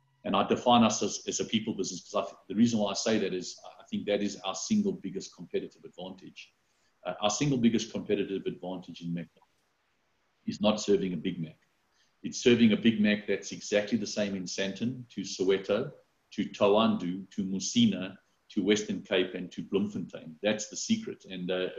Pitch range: 90-110 Hz